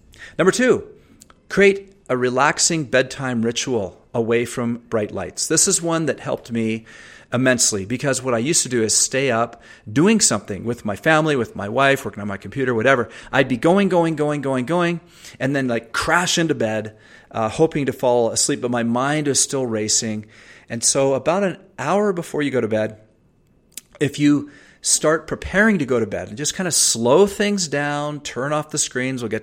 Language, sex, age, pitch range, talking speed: English, male, 40-59, 115-150 Hz, 195 wpm